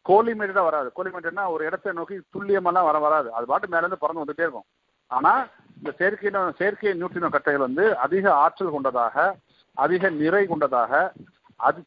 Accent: native